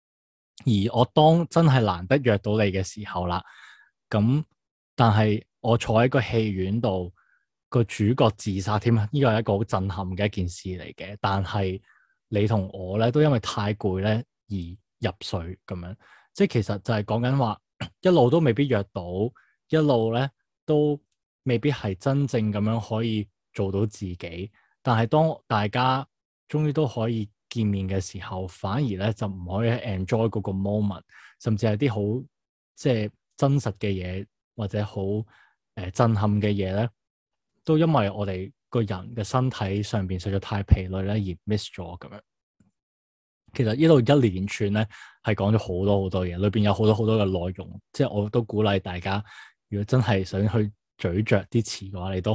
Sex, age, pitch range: male, 20-39, 95-115 Hz